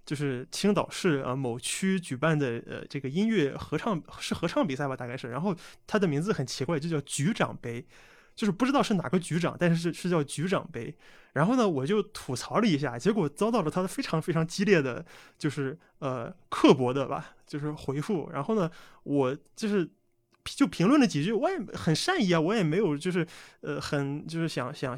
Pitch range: 135-180 Hz